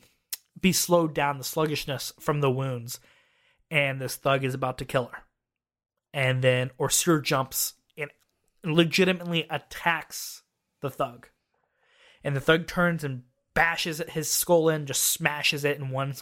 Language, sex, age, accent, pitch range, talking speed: English, male, 20-39, American, 140-165 Hz, 145 wpm